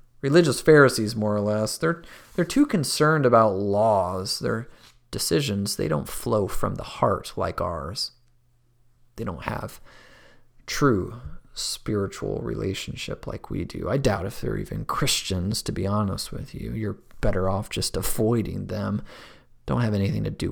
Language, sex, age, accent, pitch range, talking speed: English, male, 30-49, American, 105-125 Hz, 150 wpm